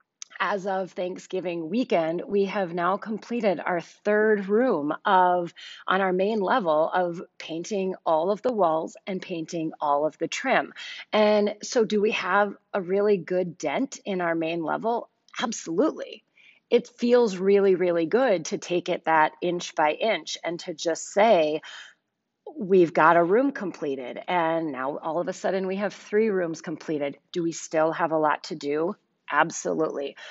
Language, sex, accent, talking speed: English, female, American, 165 wpm